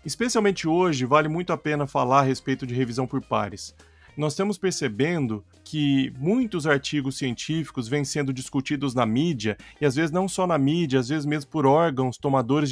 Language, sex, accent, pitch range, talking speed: Portuguese, male, Brazilian, 135-180 Hz, 180 wpm